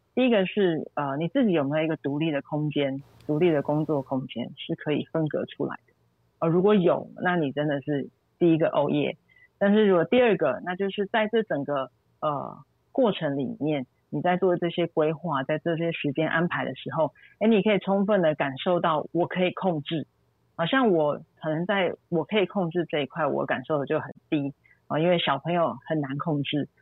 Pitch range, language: 145-185 Hz, Chinese